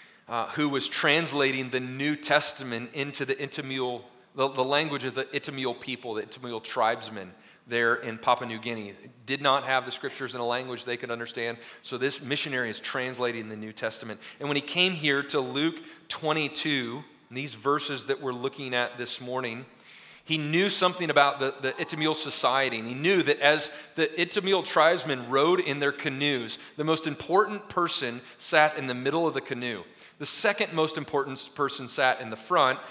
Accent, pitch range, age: American, 120-155 Hz, 40-59